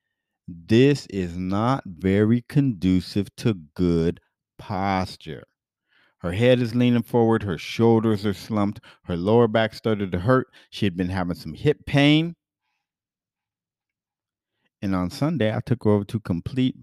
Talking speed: 140 wpm